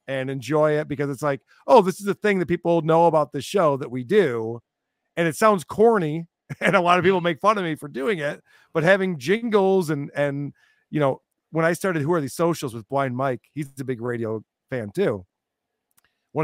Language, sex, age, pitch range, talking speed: English, male, 40-59, 130-175 Hz, 225 wpm